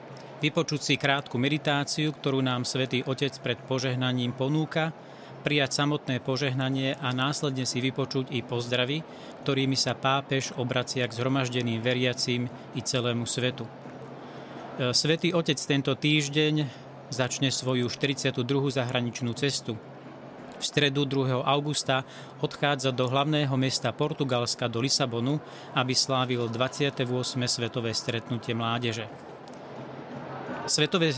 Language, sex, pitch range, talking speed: Slovak, male, 125-145 Hz, 110 wpm